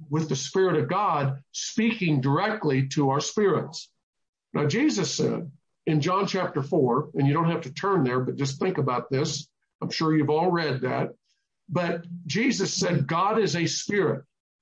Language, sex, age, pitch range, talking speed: English, male, 50-69, 150-195 Hz, 170 wpm